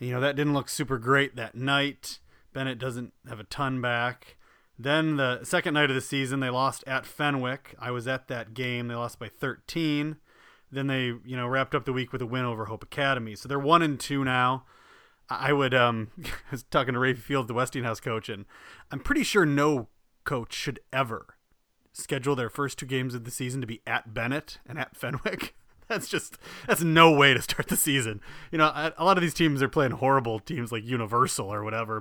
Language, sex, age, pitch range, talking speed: English, male, 30-49, 120-150 Hz, 215 wpm